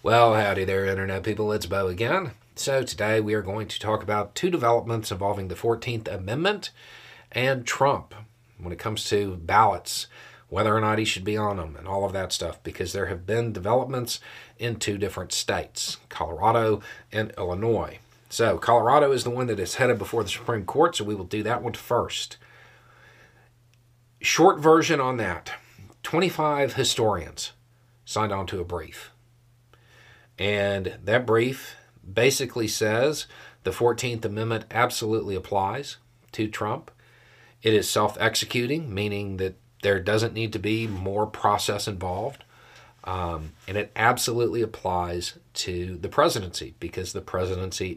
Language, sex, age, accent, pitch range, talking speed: English, male, 40-59, American, 100-120 Hz, 150 wpm